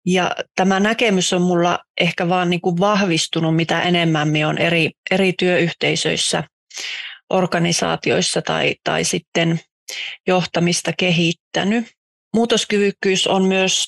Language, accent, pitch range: Finnish, native, 165-195 Hz